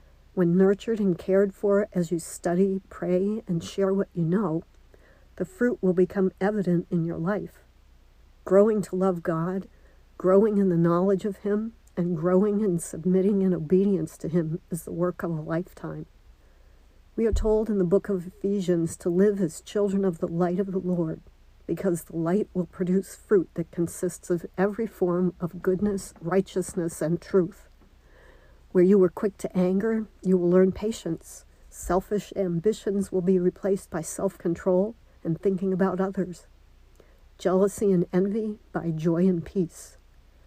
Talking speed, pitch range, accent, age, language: 160 wpm, 170-195 Hz, American, 60-79, English